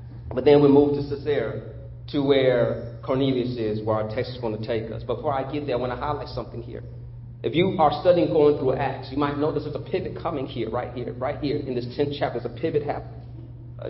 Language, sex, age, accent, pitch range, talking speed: English, male, 40-59, American, 125-150 Hz, 240 wpm